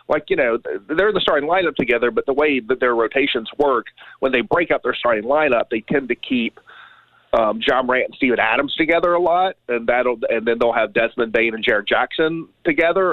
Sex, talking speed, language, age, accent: male, 220 wpm, English, 40-59, American